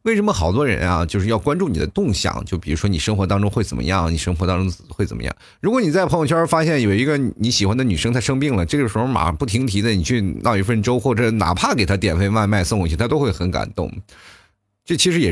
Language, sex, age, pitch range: Chinese, male, 30-49, 95-140 Hz